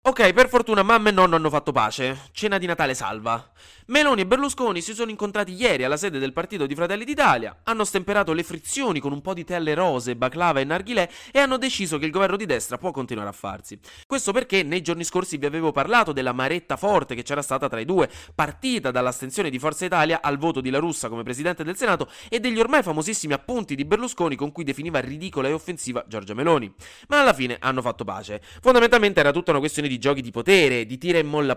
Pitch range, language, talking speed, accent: 125-190 Hz, Italian, 225 wpm, native